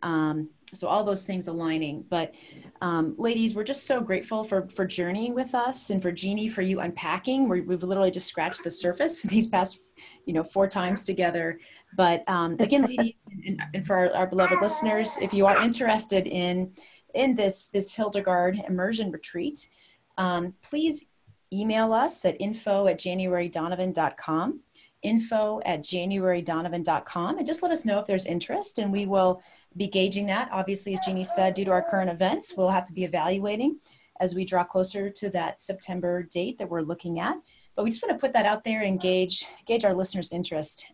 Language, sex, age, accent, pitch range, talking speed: English, female, 30-49, American, 180-210 Hz, 185 wpm